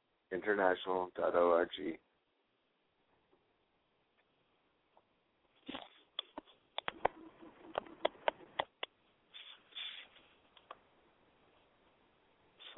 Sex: male